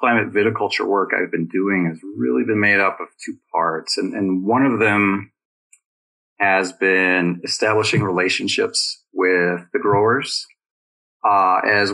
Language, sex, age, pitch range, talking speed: English, male, 30-49, 95-125 Hz, 140 wpm